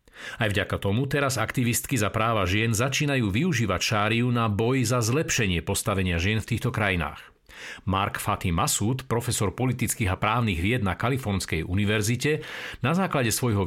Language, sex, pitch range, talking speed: Slovak, male, 100-135 Hz, 150 wpm